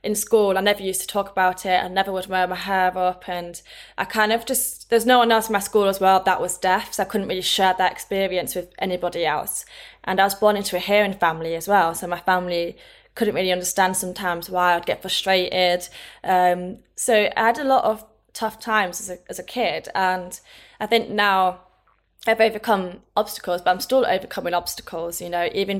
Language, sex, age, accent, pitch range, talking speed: English, female, 20-39, British, 180-200 Hz, 215 wpm